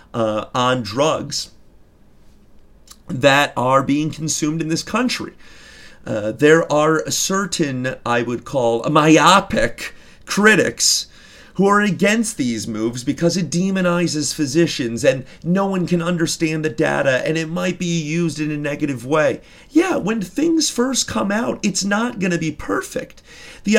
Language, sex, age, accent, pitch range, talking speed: English, male, 40-59, American, 150-205 Hz, 140 wpm